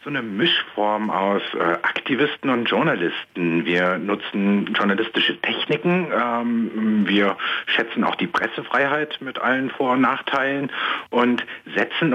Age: 60-79